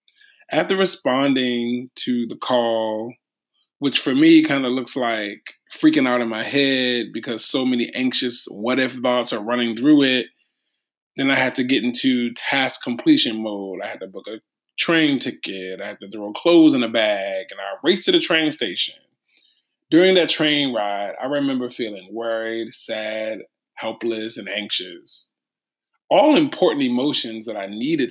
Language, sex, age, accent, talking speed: English, male, 20-39, American, 160 wpm